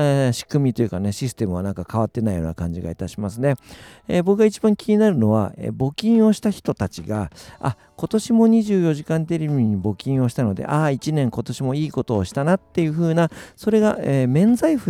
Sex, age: male, 50-69